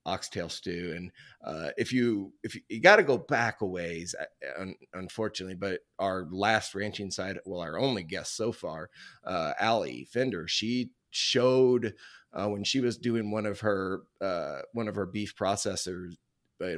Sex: male